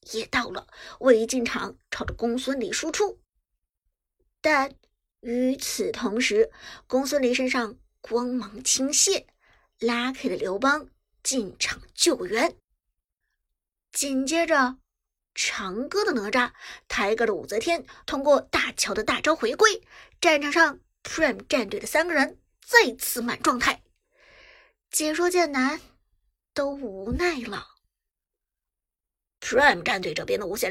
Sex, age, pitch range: male, 50-69, 245-365 Hz